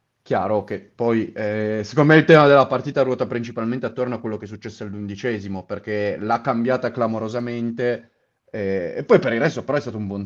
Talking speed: 200 wpm